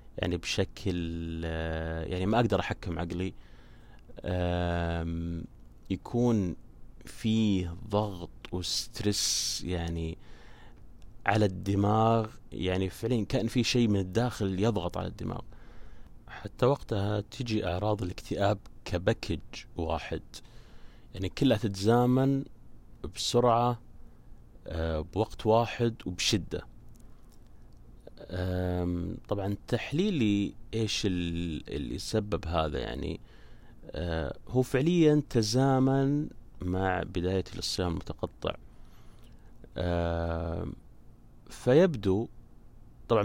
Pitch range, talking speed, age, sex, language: 85-115 Hz, 80 wpm, 30-49, male, Arabic